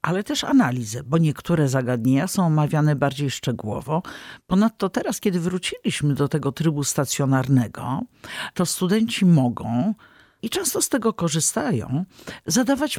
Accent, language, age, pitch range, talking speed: native, Polish, 50-69, 130-185 Hz, 125 wpm